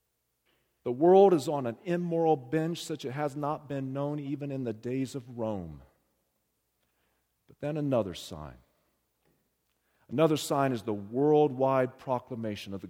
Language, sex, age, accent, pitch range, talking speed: English, male, 40-59, American, 135-185 Hz, 150 wpm